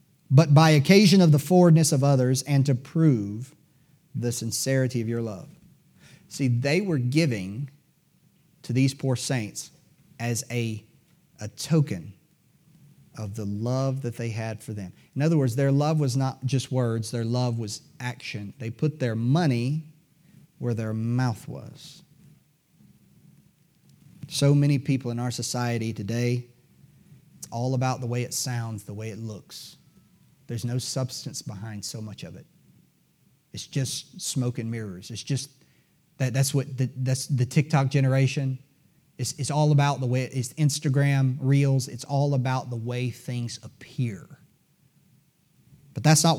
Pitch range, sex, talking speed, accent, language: 120-150 Hz, male, 155 wpm, American, English